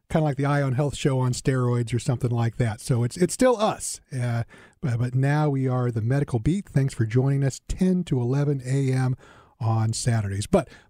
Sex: male